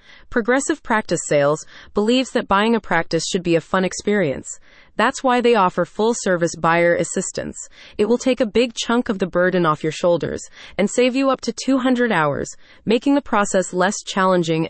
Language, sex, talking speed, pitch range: English, female, 180 wpm, 170-235 Hz